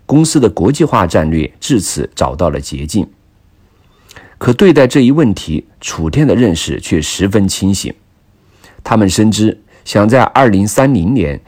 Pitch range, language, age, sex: 85-115 Hz, Chinese, 50-69, male